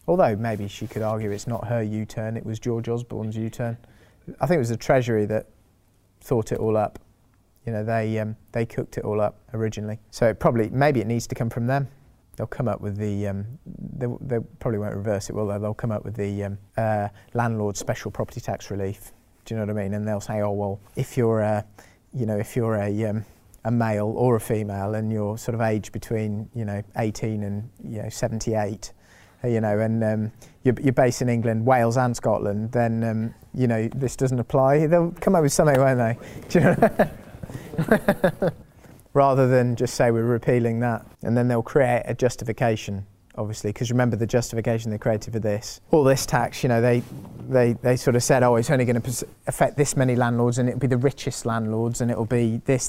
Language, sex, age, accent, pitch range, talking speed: English, male, 30-49, British, 105-125 Hz, 220 wpm